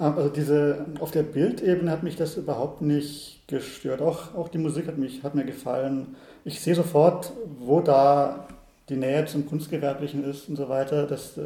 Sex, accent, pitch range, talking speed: male, German, 140-160 Hz, 180 wpm